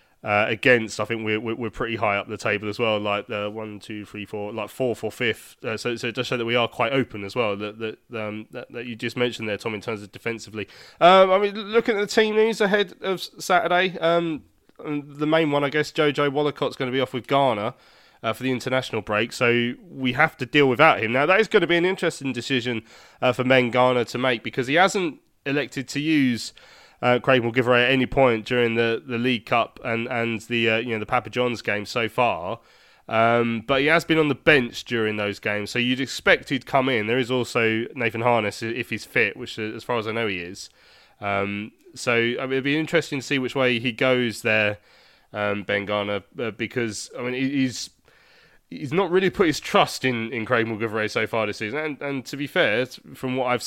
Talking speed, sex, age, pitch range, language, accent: 235 wpm, male, 20-39, 110-140 Hz, English, British